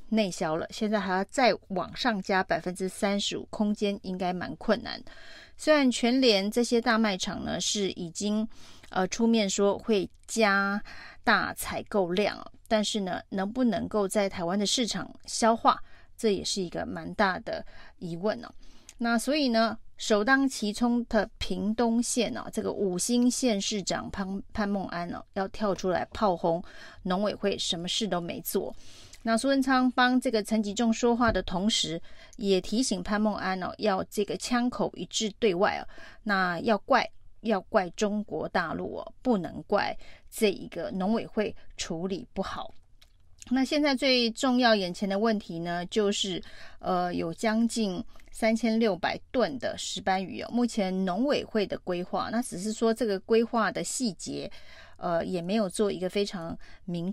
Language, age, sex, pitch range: Chinese, 30-49, female, 190-230 Hz